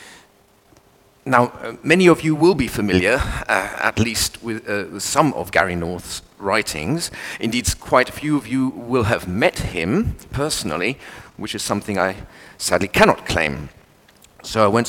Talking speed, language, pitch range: 155 wpm, English, 100-135 Hz